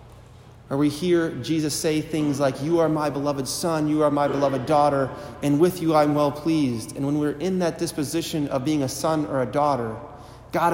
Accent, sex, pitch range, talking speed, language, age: American, male, 125-155 Hz, 210 wpm, English, 30-49